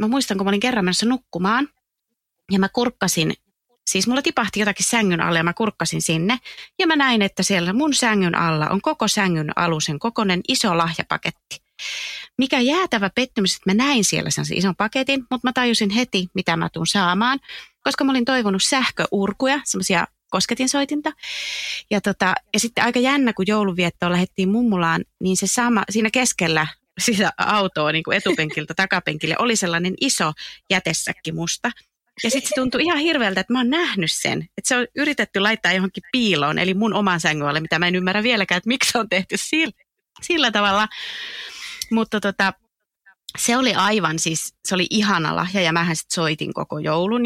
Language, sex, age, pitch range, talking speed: English, female, 30-49, 180-245 Hz, 175 wpm